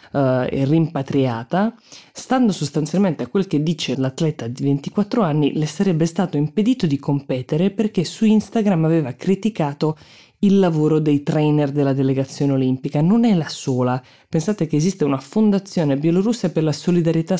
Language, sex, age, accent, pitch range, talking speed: Italian, female, 20-39, native, 135-170 Hz, 150 wpm